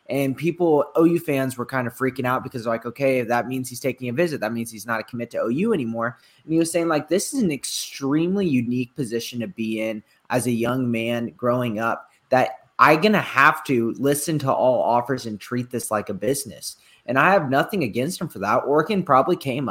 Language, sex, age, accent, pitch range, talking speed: English, male, 20-39, American, 120-145 Hz, 225 wpm